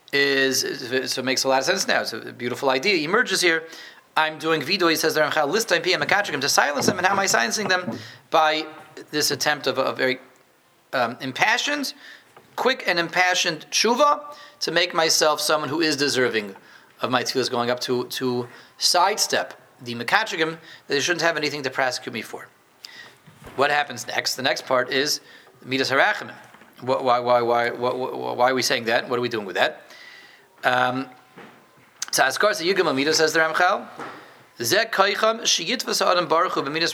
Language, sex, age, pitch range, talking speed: English, male, 30-49, 130-180 Hz, 180 wpm